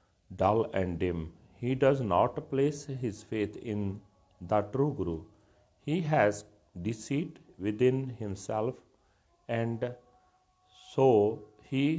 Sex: male